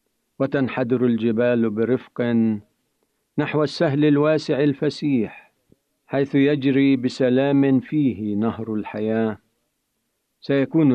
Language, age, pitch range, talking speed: Arabic, 50-69, 115-145 Hz, 75 wpm